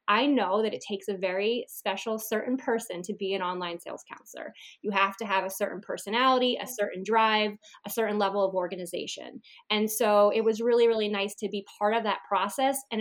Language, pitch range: English, 200-245 Hz